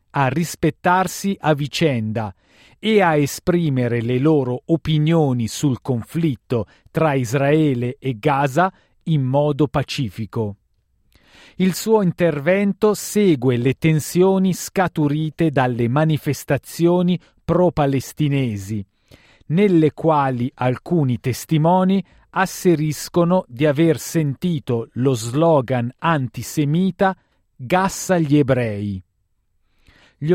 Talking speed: 85 wpm